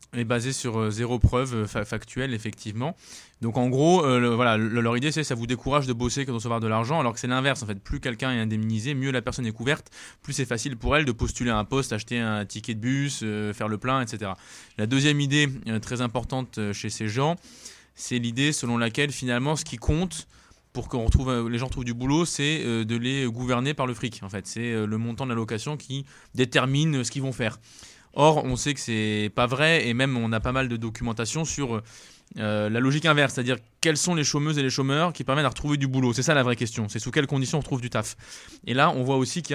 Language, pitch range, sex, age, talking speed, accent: French, 115-140 Hz, male, 20-39, 240 wpm, French